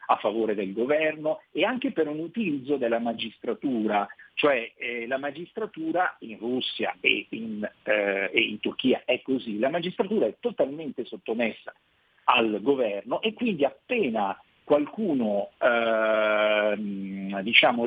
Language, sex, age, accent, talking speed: Italian, male, 50-69, native, 130 wpm